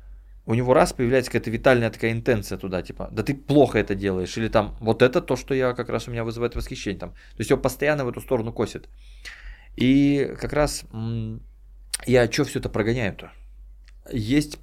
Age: 20-39